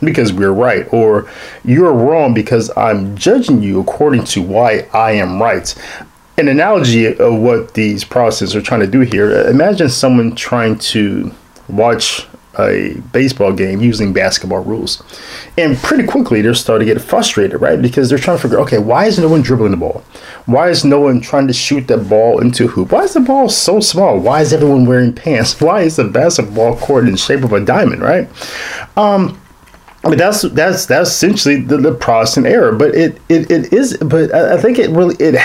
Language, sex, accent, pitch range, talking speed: English, male, American, 110-165 Hz, 200 wpm